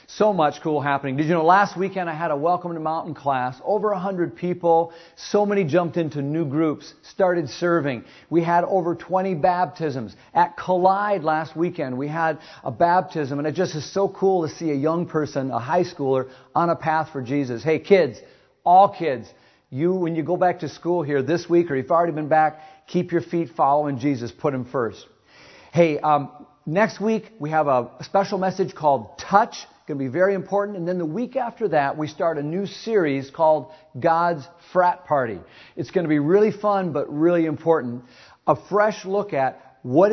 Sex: male